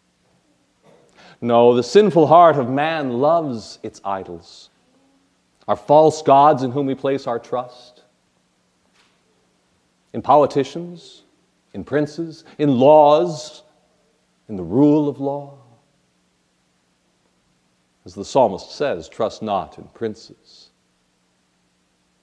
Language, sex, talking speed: English, male, 100 wpm